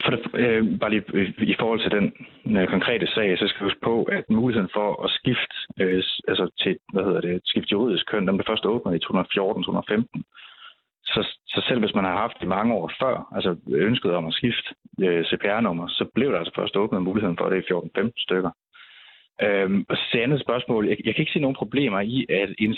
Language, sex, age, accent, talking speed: Danish, male, 30-49, native, 210 wpm